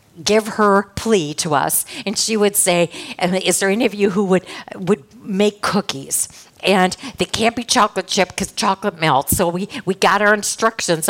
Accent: American